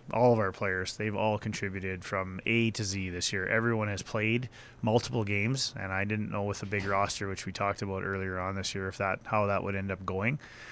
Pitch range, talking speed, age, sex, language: 95-115 Hz, 235 wpm, 20-39, male, English